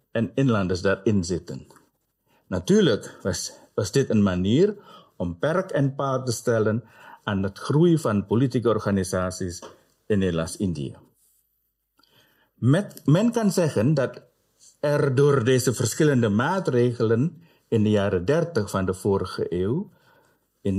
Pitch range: 100-145 Hz